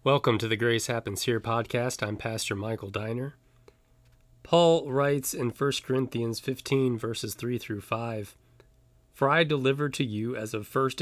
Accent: American